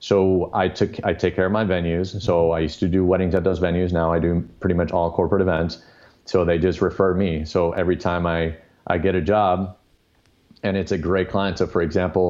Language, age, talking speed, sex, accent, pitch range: English, 40-59, 230 wpm, male, American, 85-100 Hz